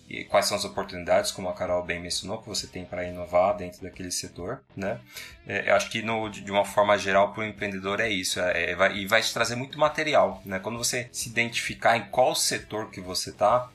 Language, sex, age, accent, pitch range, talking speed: Portuguese, male, 20-39, Brazilian, 100-125 Hz, 225 wpm